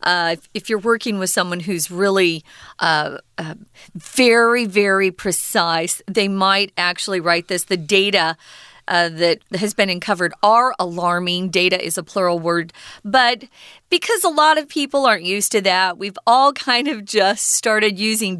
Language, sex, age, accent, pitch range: Chinese, female, 40-59, American, 180-240 Hz